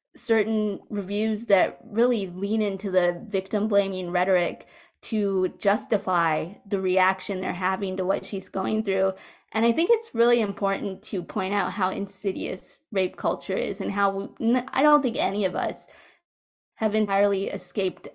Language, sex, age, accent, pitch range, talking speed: English, female, 20-39, American, 190-220 Hz, 150 wpm